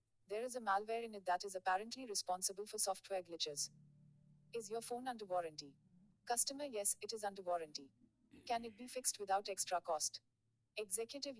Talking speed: 170 wpm